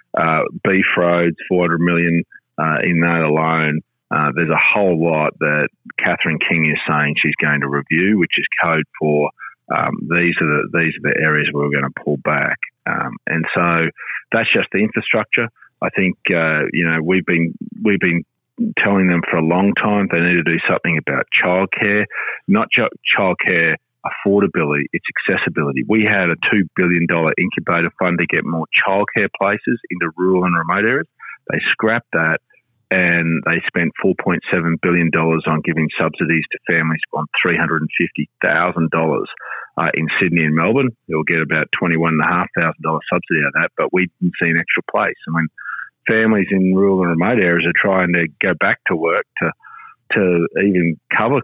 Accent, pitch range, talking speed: Australian, 80-90 Hz, 190 wpm